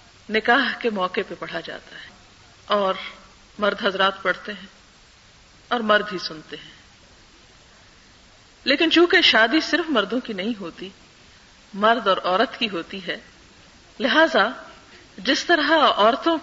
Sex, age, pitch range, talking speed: female, 50-69, 195-260 Hz, 130 wpm